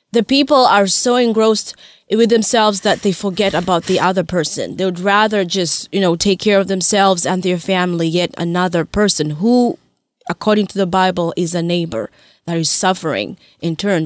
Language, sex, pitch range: English, female, 180-215 Hz